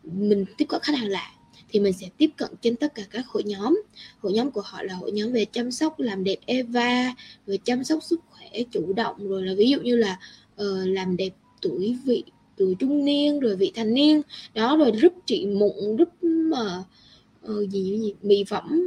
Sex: female